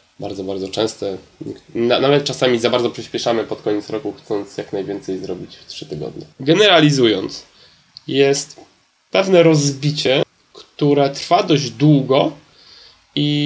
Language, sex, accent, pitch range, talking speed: Polish, male, native, 125-150 Hz, 120 wpm